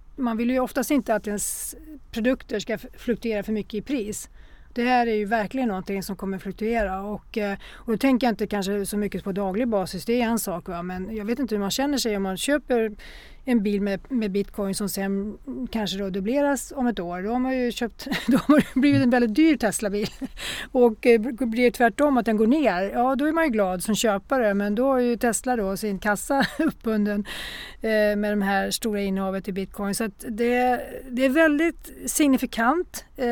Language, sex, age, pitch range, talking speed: Swedish, female, 40-59, 200-245 Hz, 205 wpm